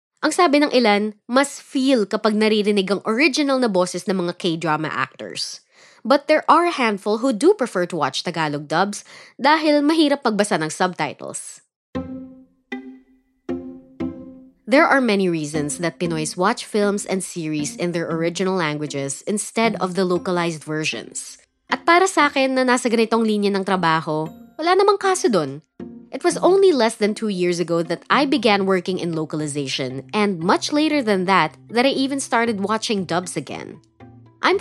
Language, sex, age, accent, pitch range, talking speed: Filipino, female, 20-39, native, 160-250 Hz, 160 wpm